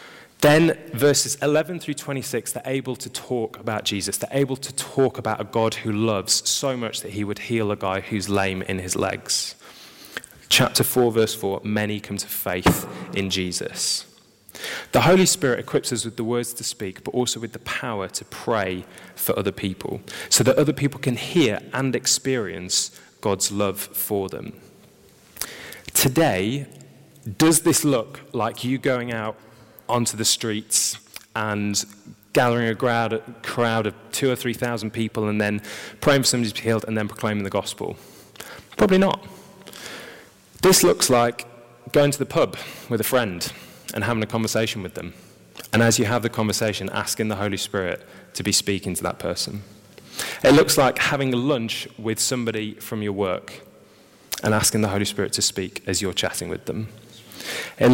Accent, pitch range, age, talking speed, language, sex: British, 105-125 Hz, 20-39, 170 wpm, English, male